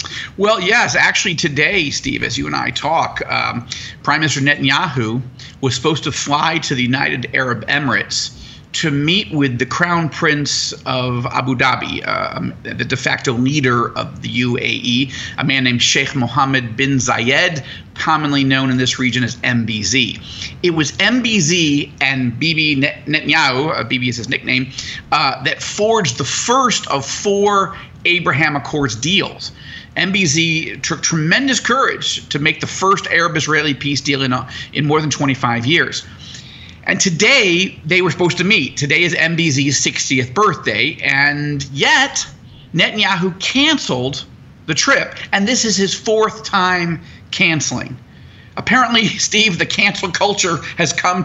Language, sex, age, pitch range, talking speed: English, male, 40-59, 135-180 Hz, 145 wpm